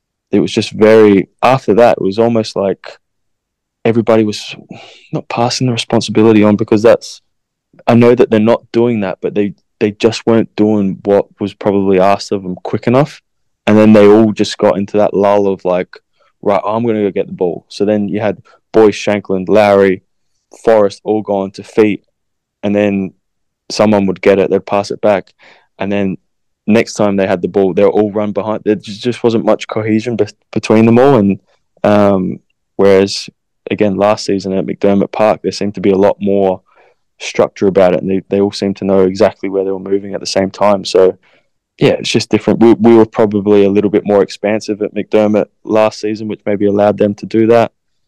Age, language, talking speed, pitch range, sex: 20-39, English, 205 wpm, 100-110 Hz, male